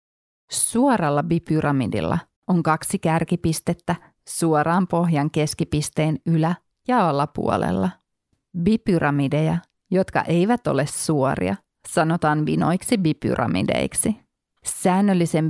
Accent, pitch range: native, 150-180 Hz